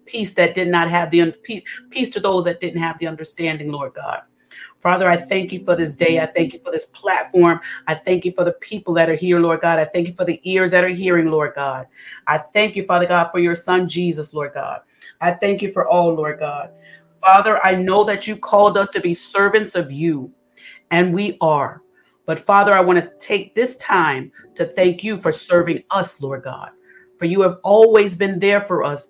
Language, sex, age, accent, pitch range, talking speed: English, female, 30-49, American, 160-195 Hz, 225 wpm